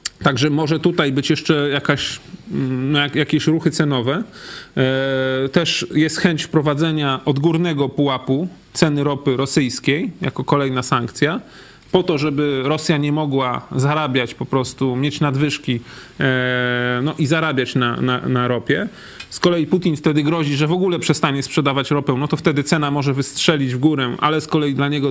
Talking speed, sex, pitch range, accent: 150 wpm, male, 130-160 Hz, native